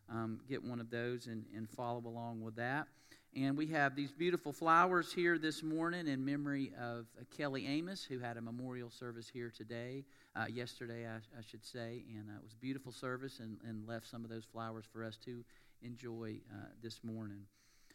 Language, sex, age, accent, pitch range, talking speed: English, male, 50-69, American, 115-135 Hz, 200 wpm